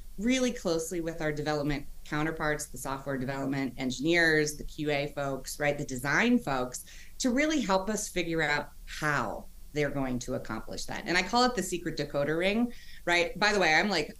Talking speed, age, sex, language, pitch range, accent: 180 wpm, 30-49, female, English, 150-205 Hz, American